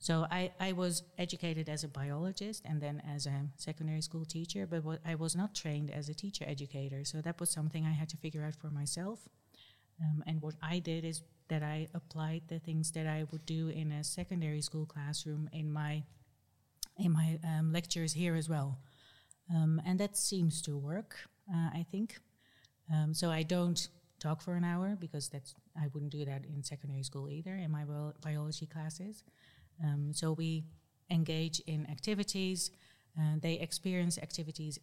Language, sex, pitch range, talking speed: English, female, 145-170 Hz, 185 wpm